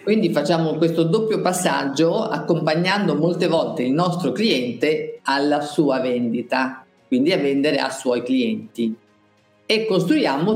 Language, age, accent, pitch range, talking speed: Italian, 50-69, native, 135-195 Hz, 125 wpm